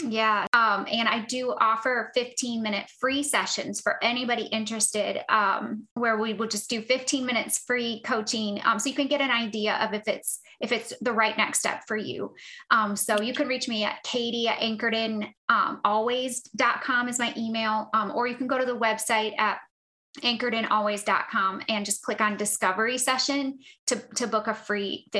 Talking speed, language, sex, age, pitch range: 180 wpm, English, female, 20-39, 220-260 Hz